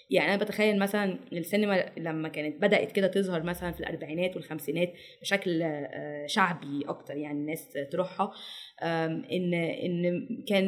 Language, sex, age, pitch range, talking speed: Arabic, female, 20-39, 175-225 Hz, 130 wpm